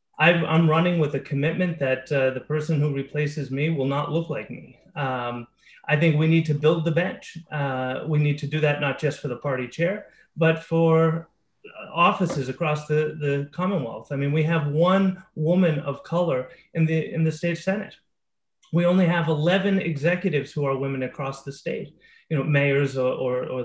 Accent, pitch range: American, 145-175 Hz